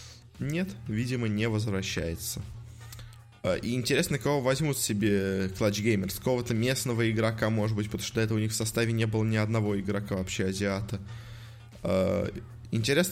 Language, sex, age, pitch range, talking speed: Russian, male, 20-39, 110-120 Hz, 145 wpm